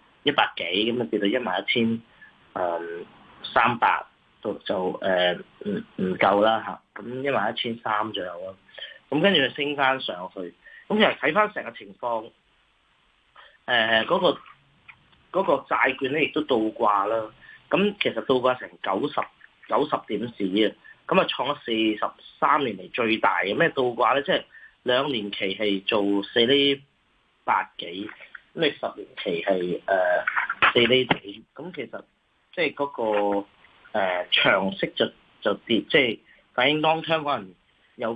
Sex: male